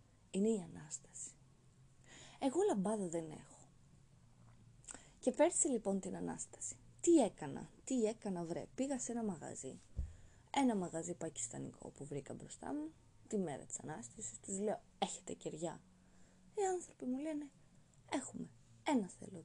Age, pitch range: 20-39, 140-235 Hz